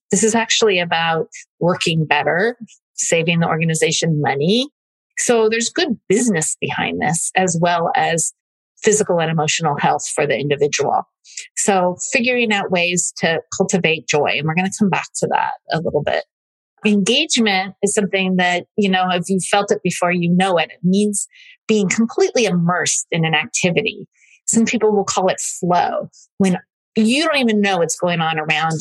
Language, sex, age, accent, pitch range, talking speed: English, female, 30-49, American, 175-220 Hz, 170 wpm